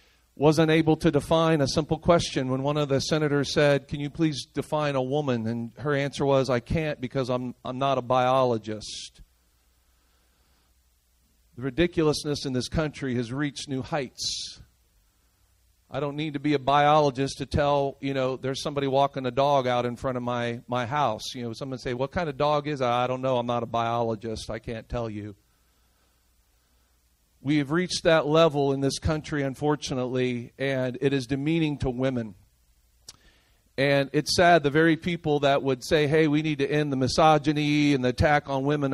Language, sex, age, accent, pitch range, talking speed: English, male, 40-59, American, 115-150 Hz, 185 wpm